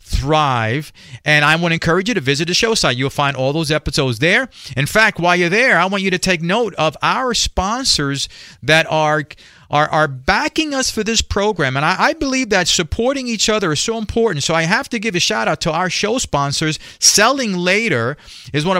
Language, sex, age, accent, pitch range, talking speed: English, male, 40-59, American, 140-185 Hz, 215 wpm